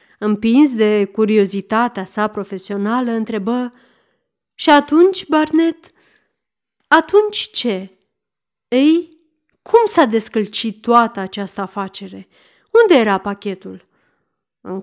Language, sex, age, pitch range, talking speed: Romanian, female, 30-49, 205-285 Hz, 90 wpm